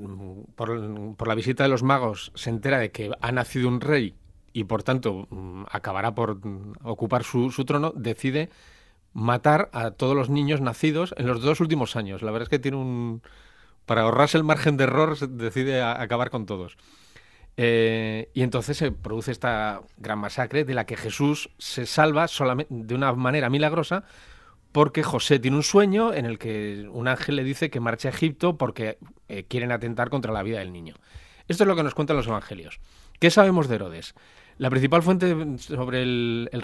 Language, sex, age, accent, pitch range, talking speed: Spanish, male, 30-49, Spanish, 110-145 Hz, 185 wpm